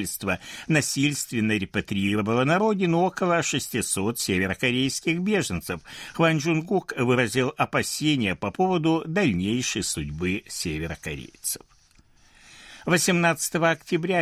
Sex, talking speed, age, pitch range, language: male, 80 wpm, 60-79, 110-170 Hz, Russian